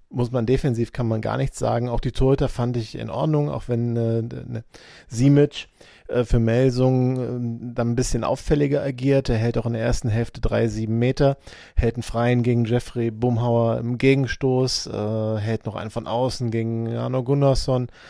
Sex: male